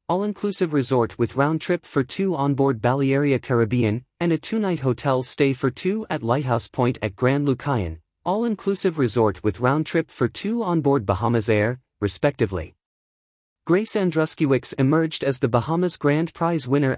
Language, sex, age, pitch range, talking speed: English, male, 30-49, 120-165 Hz, 145 wpm